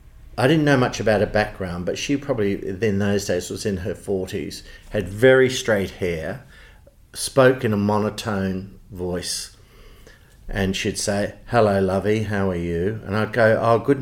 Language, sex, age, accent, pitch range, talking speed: English, male, 50-69, Australian, 95-110 Hz, 165 wpm